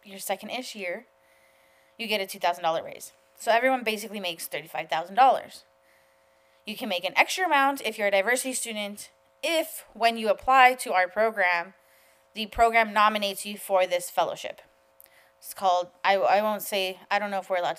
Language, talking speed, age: English, 170 wpm, 20-39